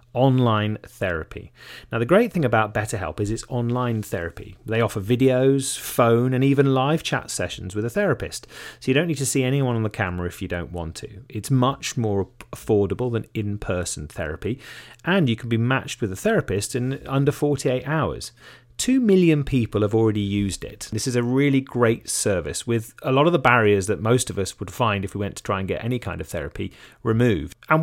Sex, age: male, 30-49